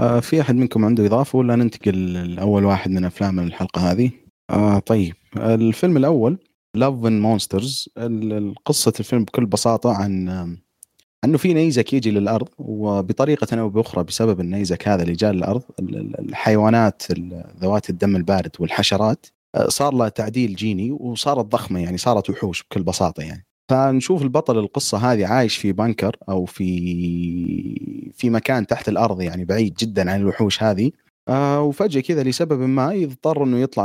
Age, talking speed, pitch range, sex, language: 30-49, 145 wpm, 95-120 Hz, male, Arabic